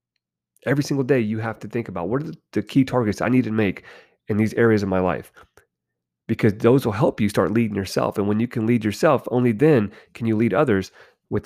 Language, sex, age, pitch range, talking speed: English, male, 30-49, 100-135 Hz, 230 wpm